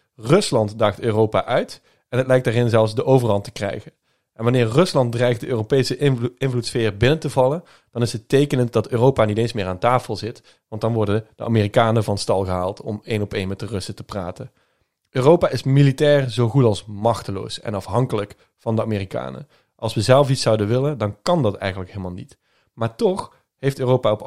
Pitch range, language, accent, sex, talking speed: 110-130 Hz, Dutch, Dutch, male, 205 wpm